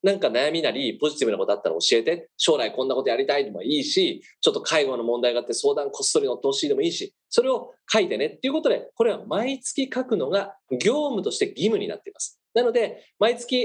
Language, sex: Japanese, male